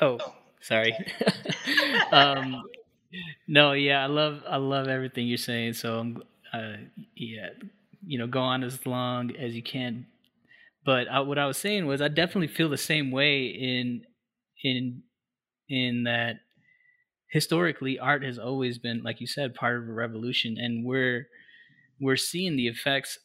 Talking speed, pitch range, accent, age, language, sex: 155 wpm, 120-145 Hz, American, 20-39, English, male